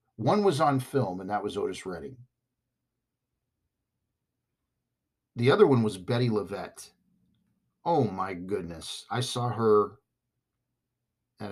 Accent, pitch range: American, 115-130 Hz